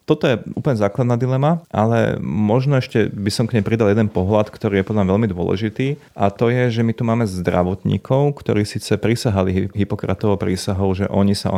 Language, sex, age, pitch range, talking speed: Slovak, male, 30-49, 95-110 Hz, 190 wpm